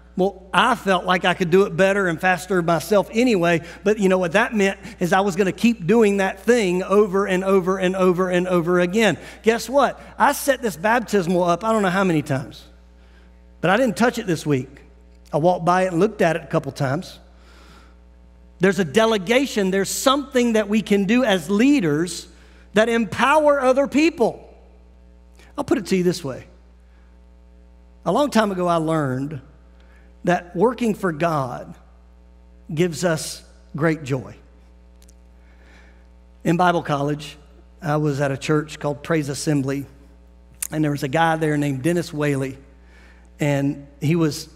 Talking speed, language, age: 170 wpm, English, 50-69